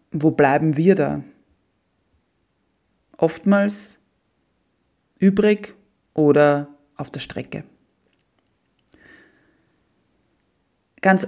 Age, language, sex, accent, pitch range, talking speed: 30-49, German, female, German, 145-205 Hz, 60 wpm